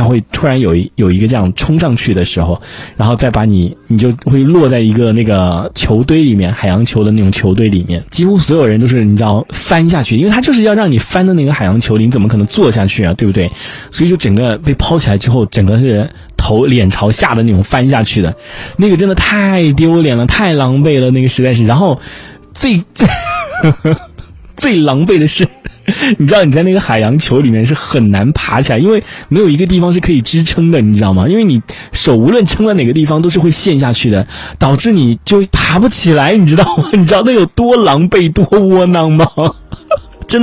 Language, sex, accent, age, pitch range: Chinese, male, native, 20-39, 110-165 Hz